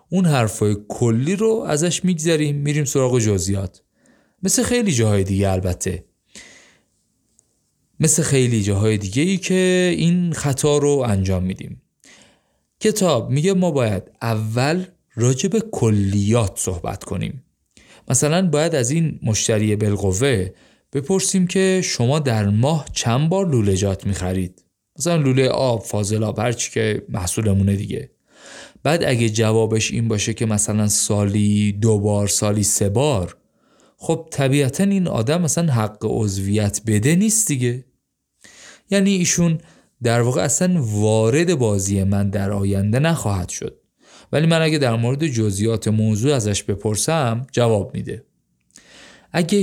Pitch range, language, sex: 105-155 Hz, Persian, male